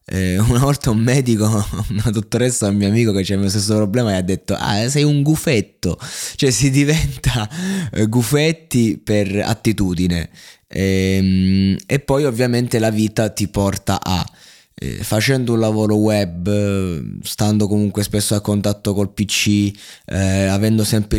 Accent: native